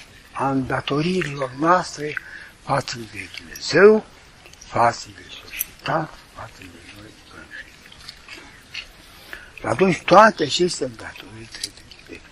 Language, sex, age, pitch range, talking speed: Romanian, male, 60-79, 110-160 Hz, 95 wpm